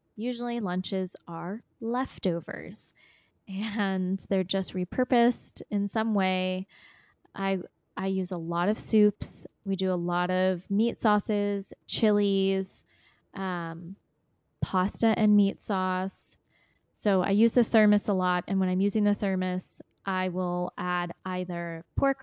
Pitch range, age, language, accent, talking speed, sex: 185-220 Hz, 20-39, English, American, 130 wpm, female